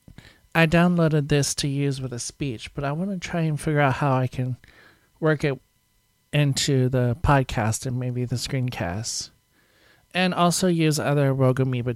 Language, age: English, 40-59